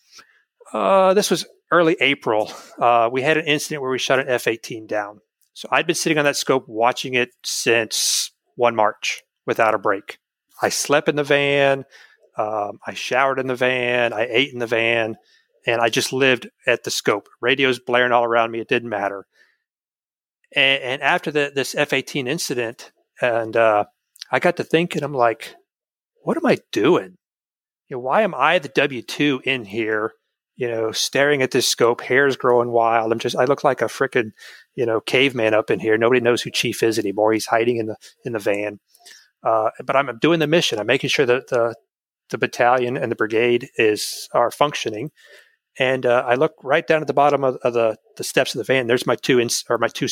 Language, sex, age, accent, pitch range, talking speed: English, male, 40-59, American, 115-145 Hz, 205 wpm